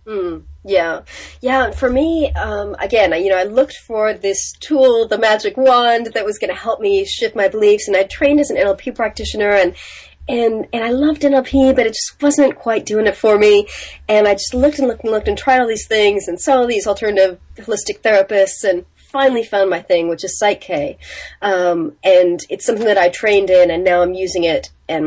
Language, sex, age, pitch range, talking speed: English, female, 30-49, 175-230 Hz, 220 wpm